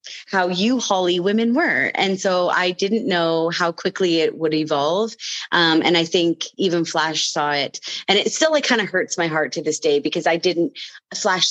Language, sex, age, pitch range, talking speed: English, female, 30-49, 150-180 Hz, 205 wpm